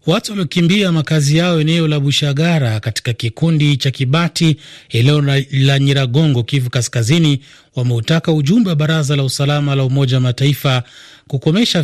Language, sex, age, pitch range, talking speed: Swahili, male, 30-49, 130-160 Hz, 125 wpm